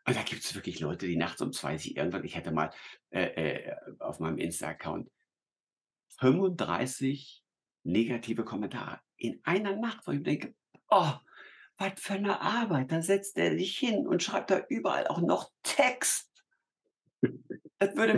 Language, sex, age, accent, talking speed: German, male, 60-79, German, 160 wpm